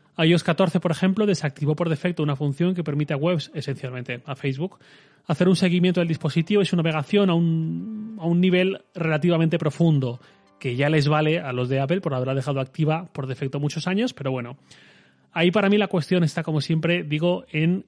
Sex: male